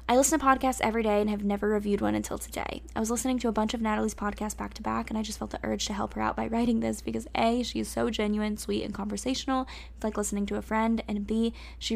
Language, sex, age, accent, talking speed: English, female, 10-29, American, 280 wpm